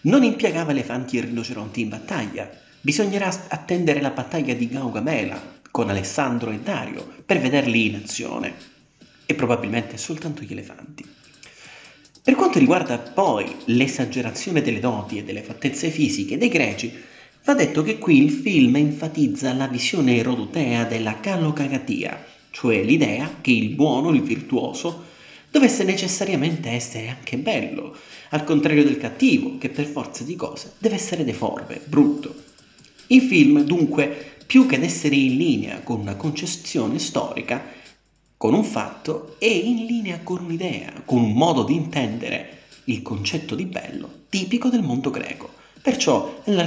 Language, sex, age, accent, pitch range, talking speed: Italian, male, 30-49, native, 125-200 Hz, 145 wpm